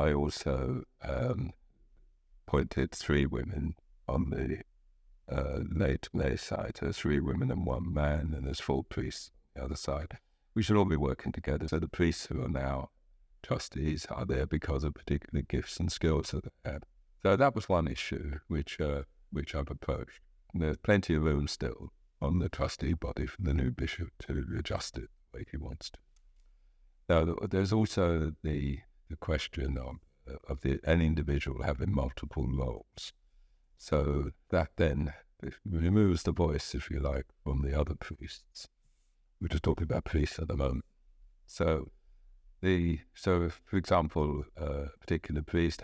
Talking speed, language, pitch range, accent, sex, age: 165 wpm, English, 70-85 Hz, British, male, 60-79